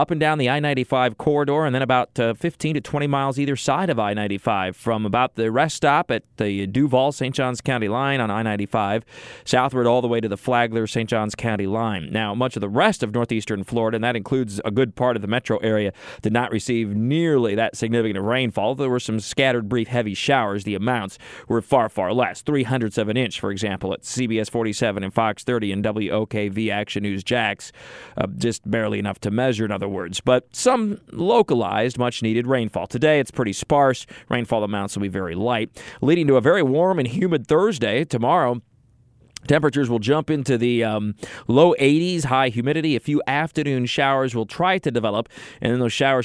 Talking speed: 195 wpm